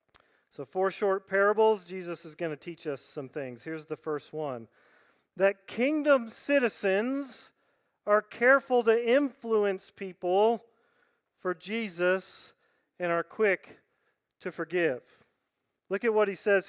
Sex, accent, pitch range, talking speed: male, American, 170-225 Hz, 130 wpm